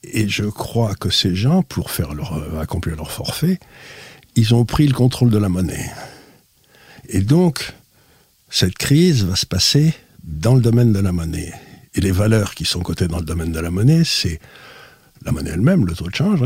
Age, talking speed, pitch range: 60-79, 195 wpm, 95-125 Hz